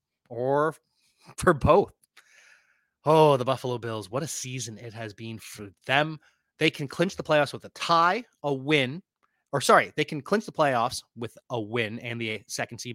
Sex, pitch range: male, 125-160 Hz